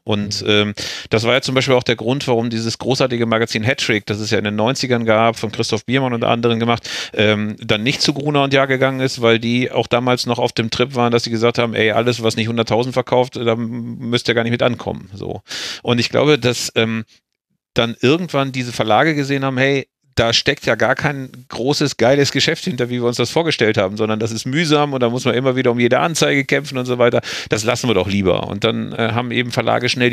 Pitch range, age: 115-130 Hz, 40-59